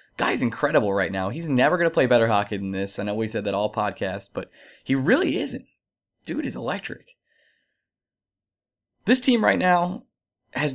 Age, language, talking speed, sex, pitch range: 20-39, English, 180 wpm, male, 110-150 Hz